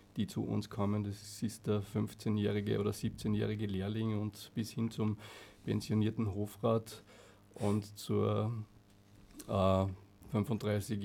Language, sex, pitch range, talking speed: German, male, 100-110 Hz, 110 wpm